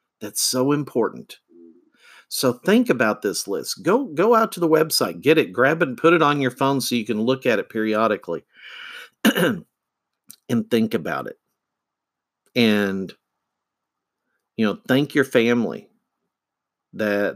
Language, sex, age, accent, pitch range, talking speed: English, male, 50-69, American, 110-140 Hz, 145 wpm